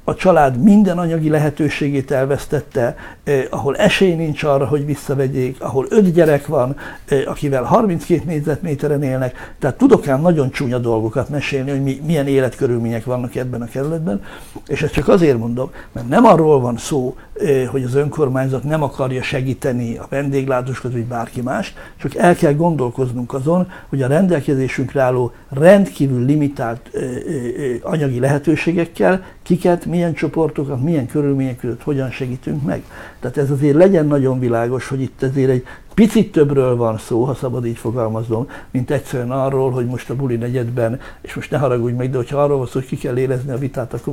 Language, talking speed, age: Hungarian, 165 wpm, 60-79